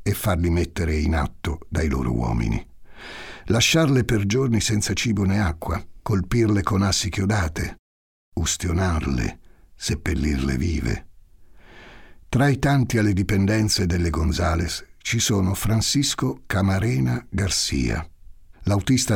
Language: Italian